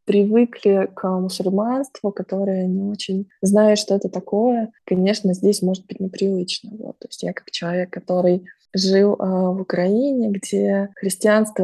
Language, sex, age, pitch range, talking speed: Russian, female, 20-39, 200-225 Hz, 140 wpm